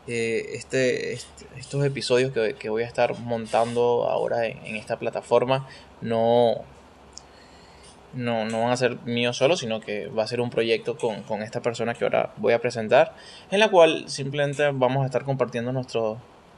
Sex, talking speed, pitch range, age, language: male, 175 wpm, 115-130 Hz, 20-39, Spanish